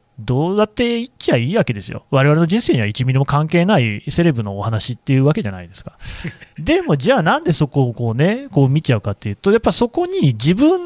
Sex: male